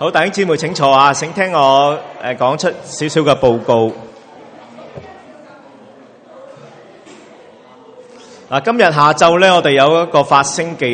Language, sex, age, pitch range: Chinese, male, 30-49, 105-140 Hz